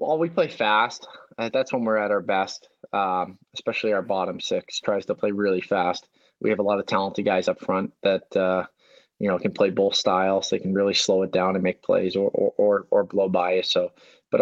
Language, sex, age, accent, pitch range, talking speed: English, male, 20-39, American, 95-120 Hz, 225 wpm